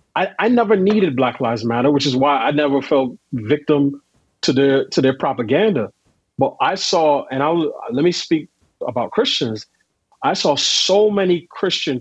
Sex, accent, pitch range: male, American, 135-175 Hz